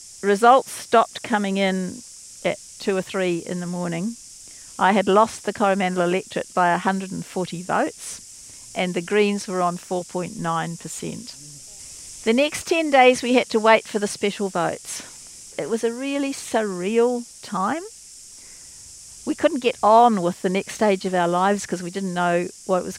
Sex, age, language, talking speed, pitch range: female, 50-69, English, 160 wpm, 185-230 Hz